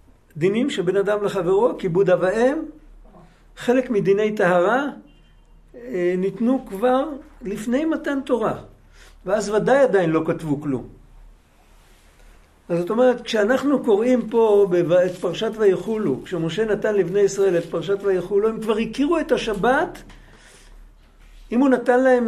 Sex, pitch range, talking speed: male, 185-250 Hz, 125 wpm